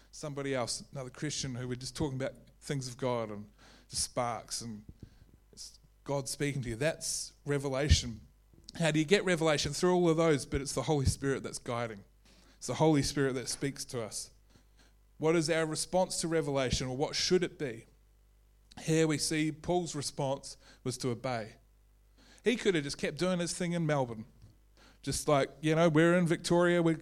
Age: 30-49